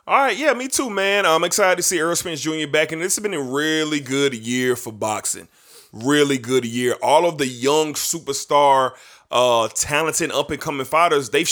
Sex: male